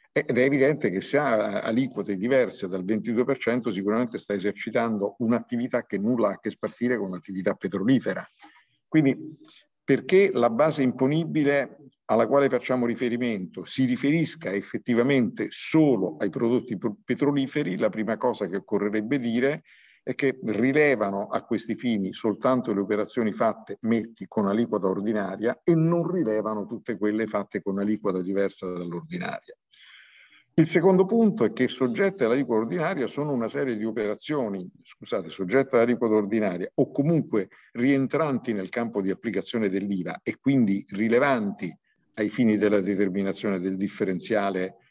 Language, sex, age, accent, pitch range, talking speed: Italian, male, 50-69, native, 105-135 Hz, 140 wpm